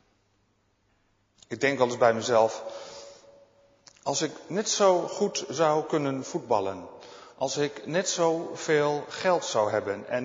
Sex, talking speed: male, 130 wpm